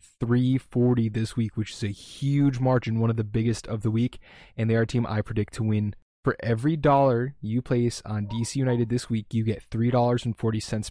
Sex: male